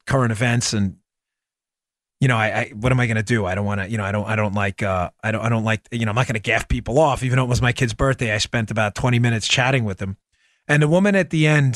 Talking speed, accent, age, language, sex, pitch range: 305 wpm, American, 30-49, English, male, 125-180 Hz